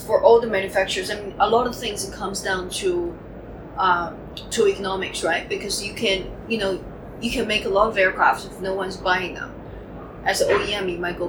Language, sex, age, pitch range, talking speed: English, female, 30-49, 180-215 Hz, 220 wpm